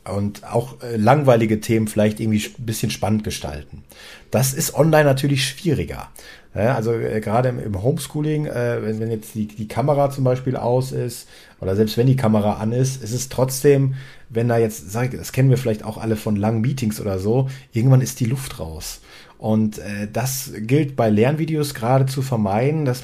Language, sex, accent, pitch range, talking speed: German, male, German, 110-135 Hz, 170 wpm